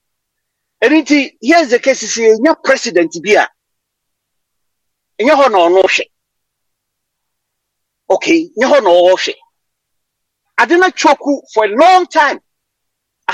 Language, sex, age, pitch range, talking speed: English, male, 40-59, 240-340 Hz, 110 wpm